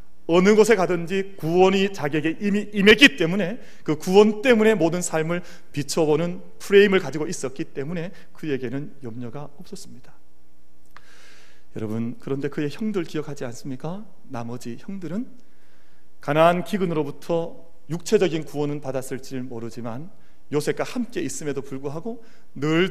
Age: 40-59